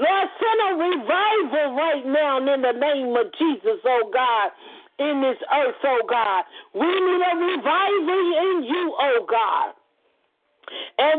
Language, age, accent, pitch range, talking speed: English, 50-69, American, 260-365 Hz, 155 wpm